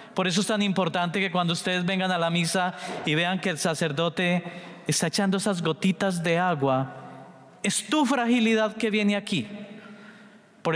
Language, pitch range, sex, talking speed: English, 175-215 Hz, male, 165 wpm